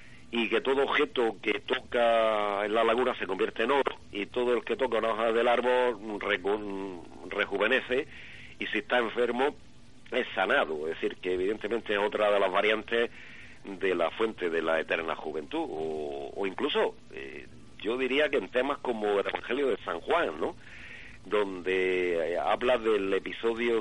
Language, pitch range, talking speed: Spanish, 100-135 Hz, 165 wpm